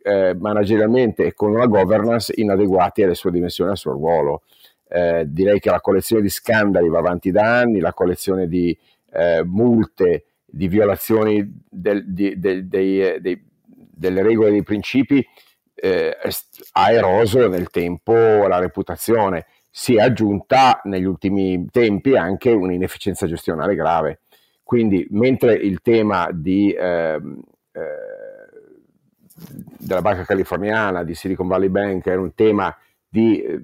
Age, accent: 50-69, native